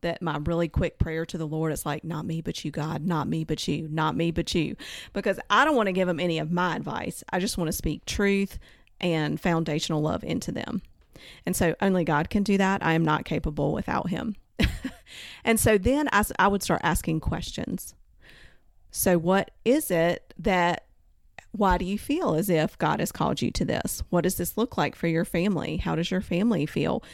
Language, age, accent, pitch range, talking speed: English, 30-49, American, 165-210 Hz, 215 wpm